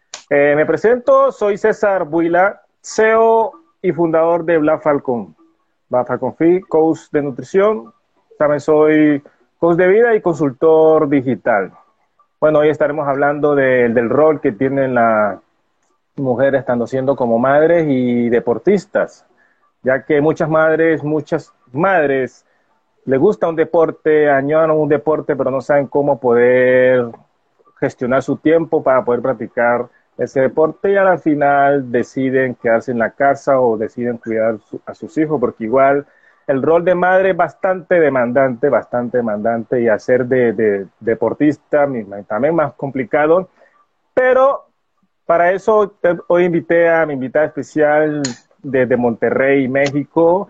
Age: 30-49